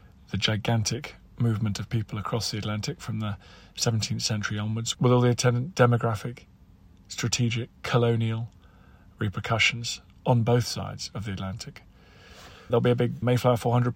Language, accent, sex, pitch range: English, British, male, 100-125 Hz